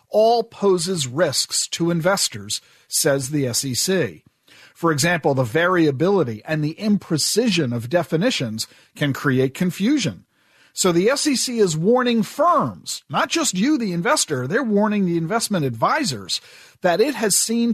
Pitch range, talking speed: 155-225 Hz, 135 wpm